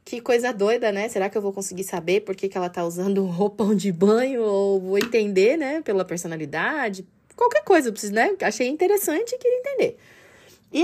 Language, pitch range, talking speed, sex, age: Portuguese, 185-270 Hz, 190 wpm, female, 20-39